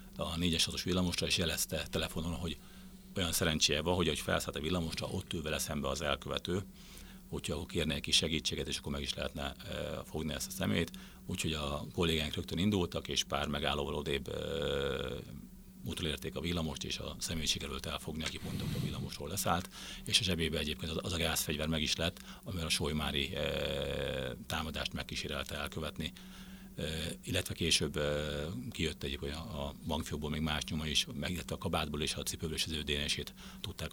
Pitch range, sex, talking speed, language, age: 75-90 Hz, male, 175 wpm, Hungarian, 50-69